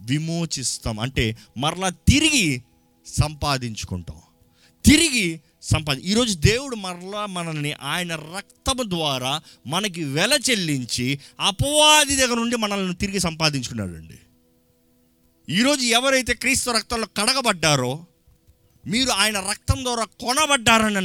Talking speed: 95 wpm